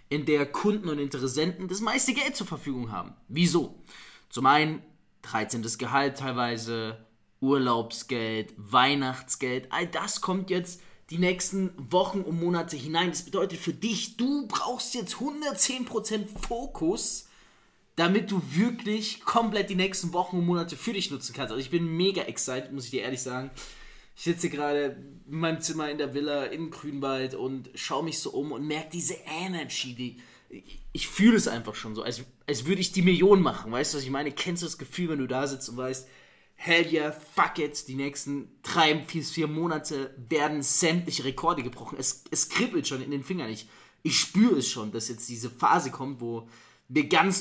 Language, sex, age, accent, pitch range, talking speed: German, male, 20-39, German, 130-180 Hz, 180 wpm